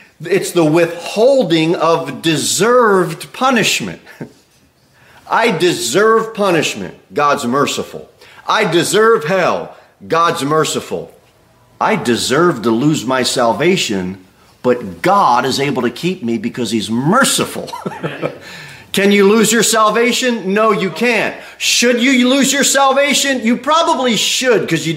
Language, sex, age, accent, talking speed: English, male, 40-59, American, 120 wpm